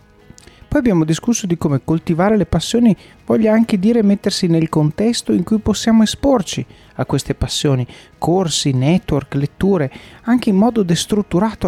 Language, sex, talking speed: Italian, male, 145 wpm